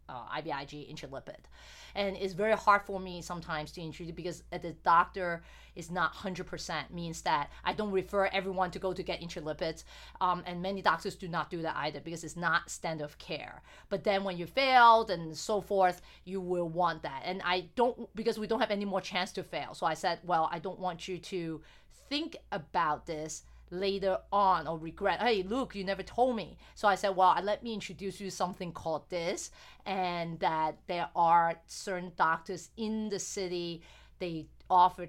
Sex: female